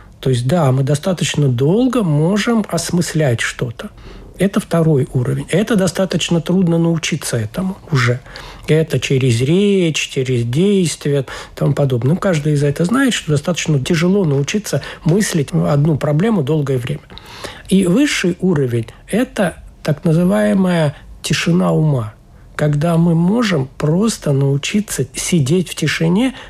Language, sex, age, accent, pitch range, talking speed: Russian, male, 60-79, native, 140-185 Hz, 125 wpm